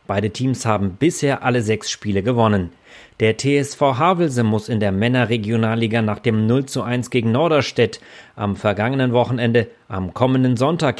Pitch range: 110-135 Hz